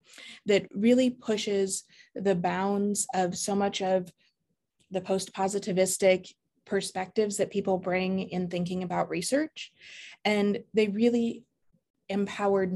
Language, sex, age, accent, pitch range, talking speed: English, female, 20-39, American, 185-215 Hz, 110 wpm